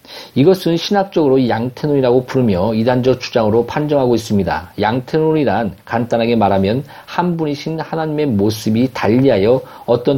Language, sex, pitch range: Korean, male, 125-170 Hz